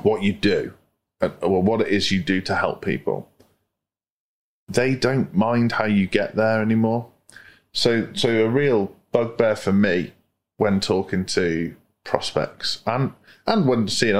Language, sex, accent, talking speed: English, male, British, 150 wpm